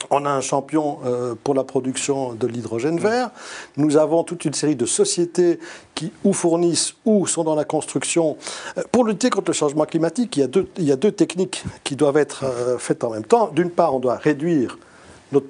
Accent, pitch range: French, 125-165 Hz